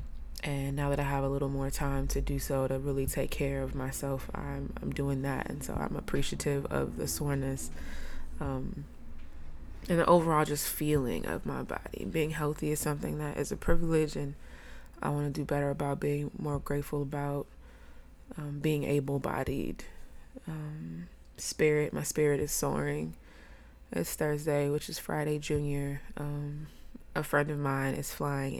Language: English